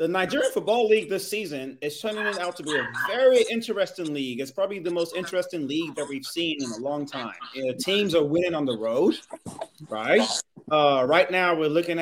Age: 30-49